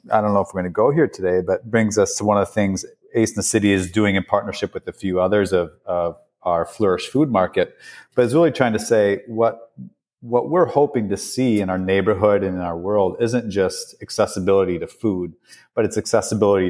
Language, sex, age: English, male, 30-49